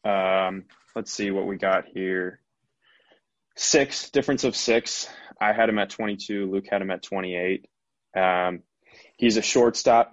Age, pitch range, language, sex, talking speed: 20-39, 95-110 Hz, English, male, 150 wpm